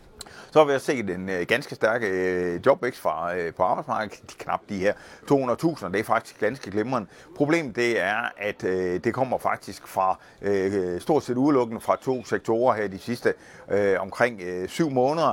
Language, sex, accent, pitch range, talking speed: Danish, male, native, 95-125 Hz, 175 wpm